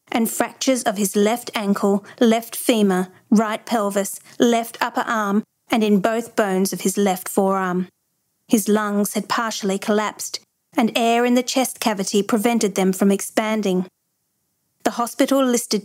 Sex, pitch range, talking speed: female, 200-240 Hz, 150 wpm